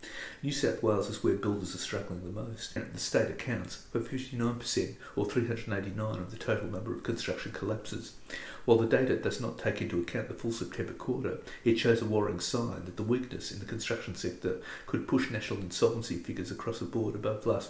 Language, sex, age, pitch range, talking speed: English, male, 50-69, 95-115 Hz, 195 wpm